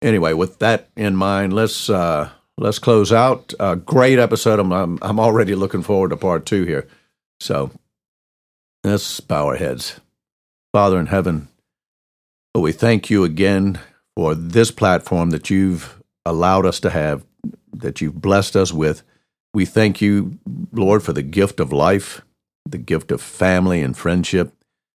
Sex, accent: male, American